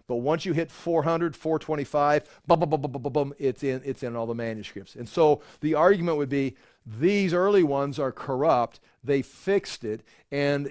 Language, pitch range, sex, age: English, 130-155 Hz, male, 50-69